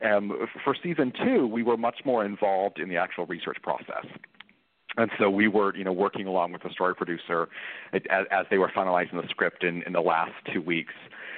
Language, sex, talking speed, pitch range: English, male, 205 wpm, 90-110 Hz